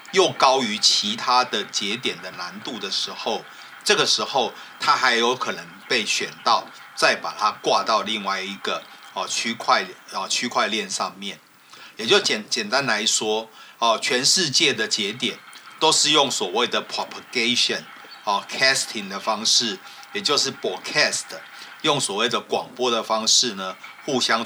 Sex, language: male, Chinese